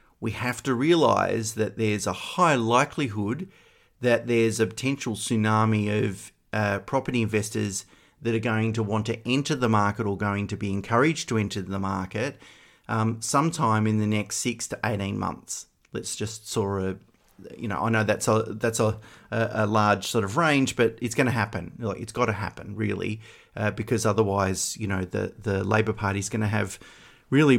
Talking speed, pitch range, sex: 185 wpm, 100-120 Hz, male